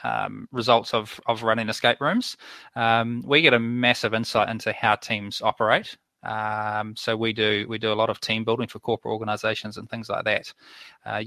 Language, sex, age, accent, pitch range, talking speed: English, male, 20-39, Australian, 110-120 Hz, 190 wpm